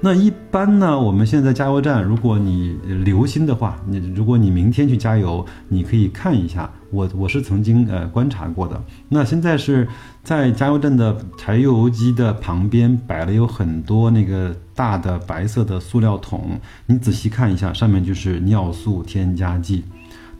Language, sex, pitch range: Chinese, male, 95-120 Hz